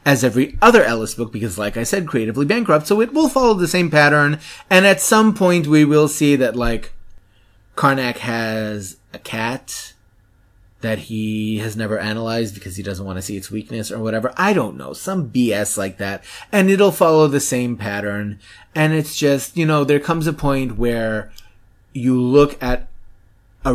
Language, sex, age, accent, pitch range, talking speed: English, male, 30-49, American, 110-160 Hz, 185 wpm